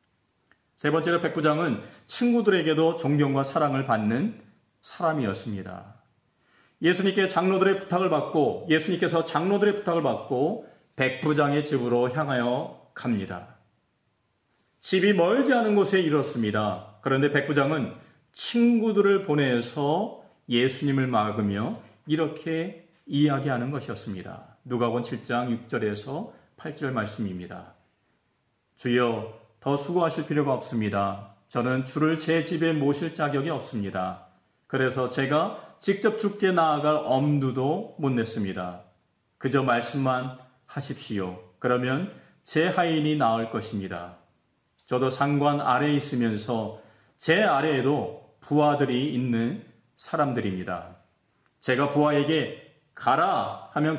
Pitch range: 115-160 Hz